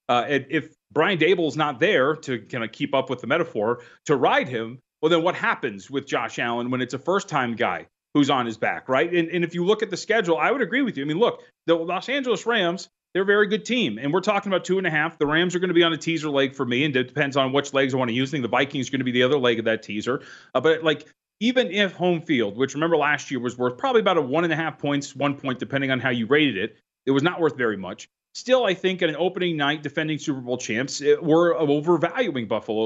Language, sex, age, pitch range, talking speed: English, male, 30-49, 135-175 Hz, 285 wpm